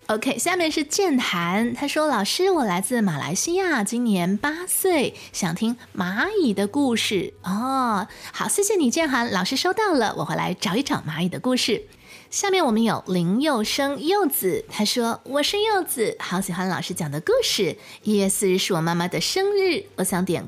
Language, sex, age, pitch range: Chinese, female, 20-39, 200-300 Hz